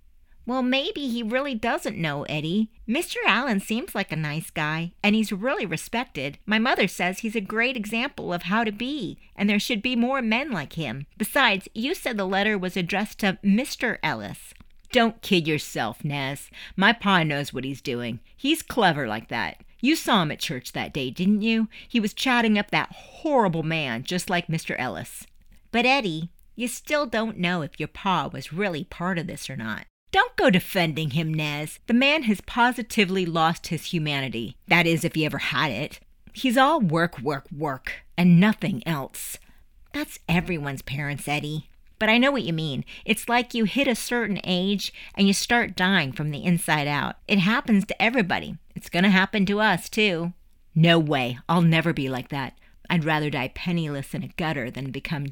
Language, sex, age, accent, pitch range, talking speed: English, female, 50-69, American, 155-225 Hz, 190 wpm